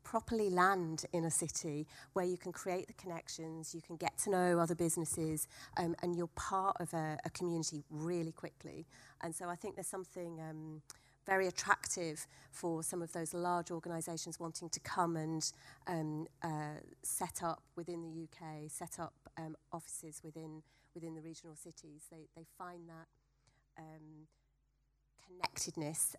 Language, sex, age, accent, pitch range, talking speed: English, female, 30-49, British, 155-175 Hz, 160 wpm